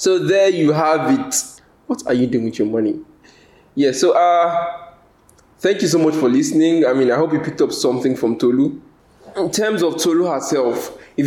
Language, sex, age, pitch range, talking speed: English, male, 20-39, 120-175 Hz, 195 wpm